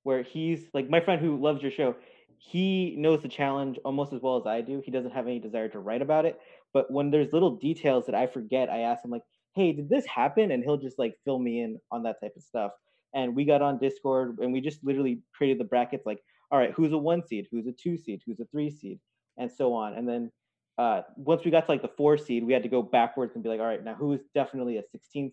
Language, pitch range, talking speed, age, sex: English, 125-165 Hz, 270 wpm, 20-39, male